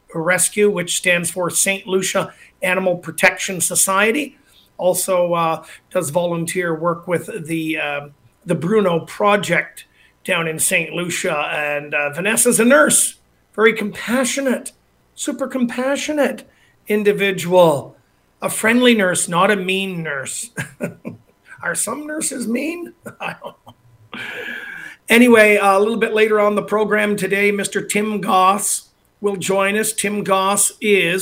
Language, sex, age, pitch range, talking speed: English, male, 50-69, 175-210 Hz, 125 wpm